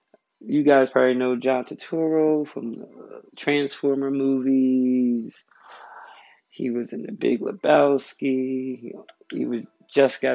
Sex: male